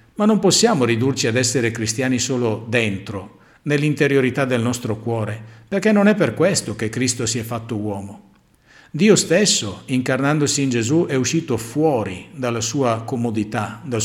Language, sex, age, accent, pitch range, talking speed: Italian, male, 50-69, native, 110-140 Hz, 155 wpm